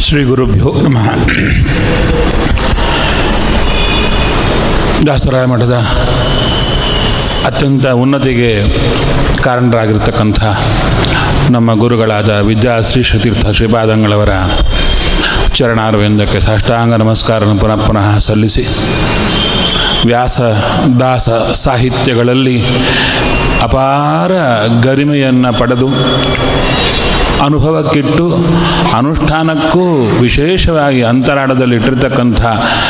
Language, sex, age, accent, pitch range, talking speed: Kannada, male, 30-49, native, 110-130 Hz, 55 wpm